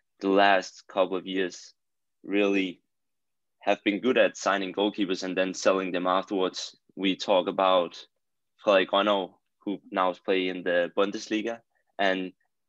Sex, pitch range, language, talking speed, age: male, 90-100 Hz, English, 135 wpm, 20-39